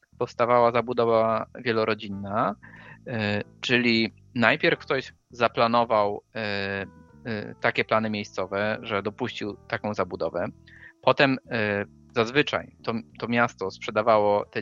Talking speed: 85 wpm